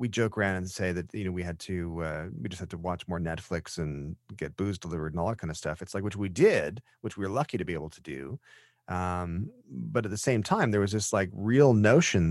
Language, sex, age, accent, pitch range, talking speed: English, male, 30-49, American, 90-120 Hz, 270 wpm